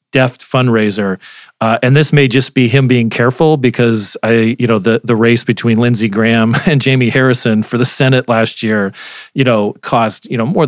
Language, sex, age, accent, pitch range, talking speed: English, male, 40-59, American, 110-135 Hz, 195 wpm